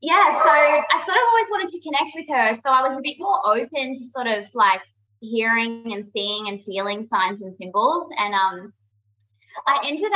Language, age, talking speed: English, 20-39, 200 wpm